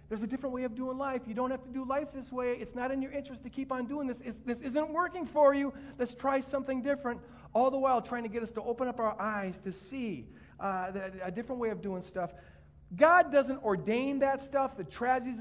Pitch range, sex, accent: 195-255 Hz, male, American